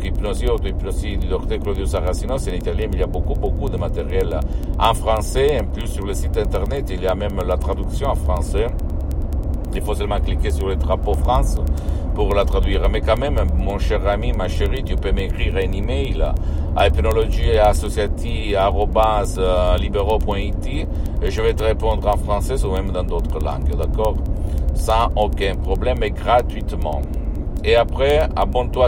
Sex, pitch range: male, 70-100 Hz